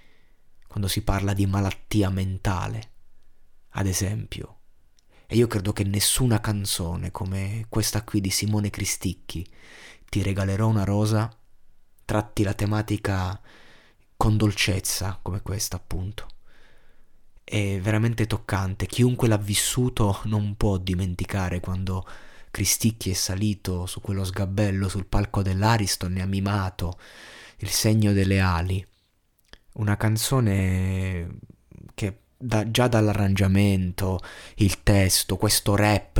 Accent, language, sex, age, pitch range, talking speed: native, Italian, male, 20-39, 95-110 Hz, 115 wpm